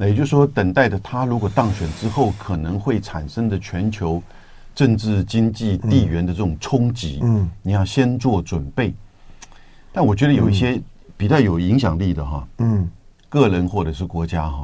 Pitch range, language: 90-125 Hz, Chinese